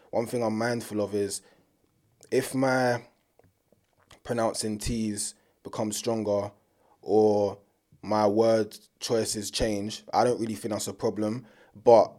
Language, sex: English, male